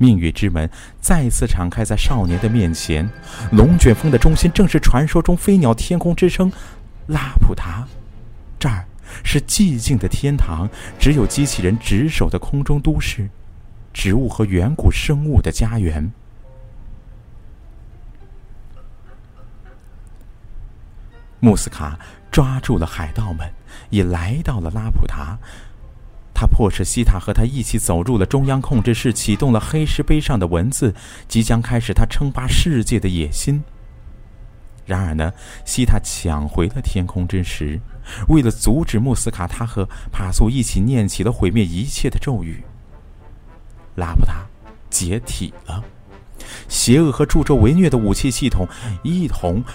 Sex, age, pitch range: male, 50-69, 95-125 Hz